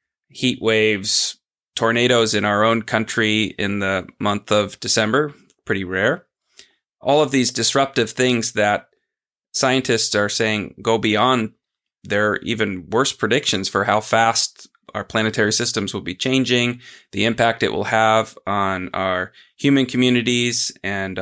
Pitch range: 110-130 Hz